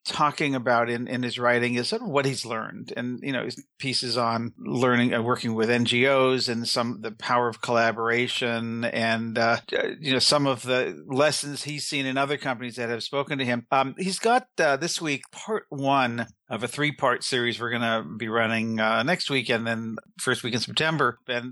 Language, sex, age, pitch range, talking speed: English, male, 50-69, 120-145 Hz, 210 wpm